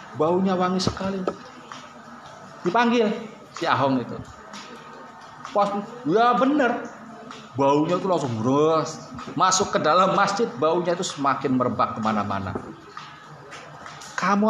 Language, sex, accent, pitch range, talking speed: Indonesian, male, native, 145-210 Hz, 100 wpm